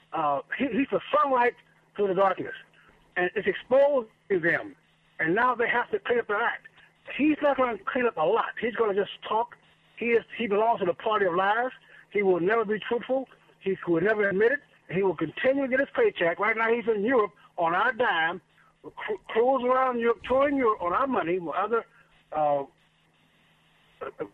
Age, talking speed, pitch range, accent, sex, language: 60-79, 195 wpm, 215-295 Hz, American, male, English